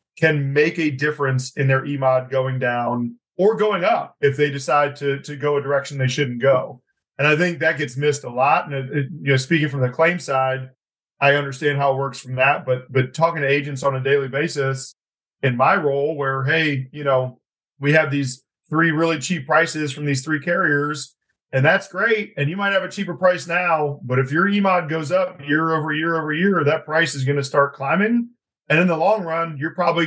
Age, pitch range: 40-59, 135-160 Hz